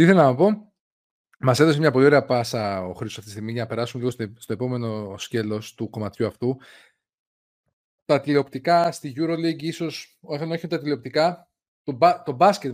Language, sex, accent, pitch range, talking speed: Greek, male, native, 130-175 Hz, 170 wpm